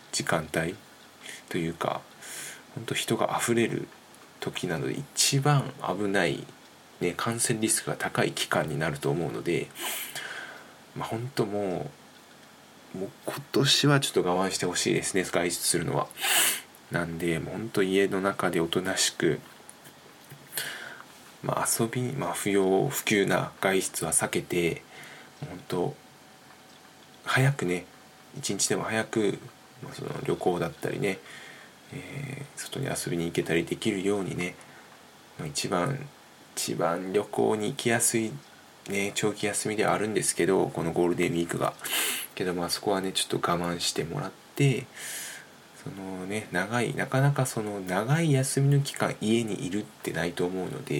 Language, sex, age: Japanese, male, 20-39